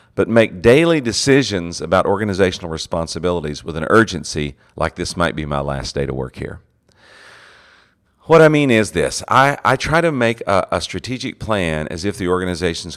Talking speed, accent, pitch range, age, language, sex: 175 wpm, American, 75-105 Hz, 40-59, English, male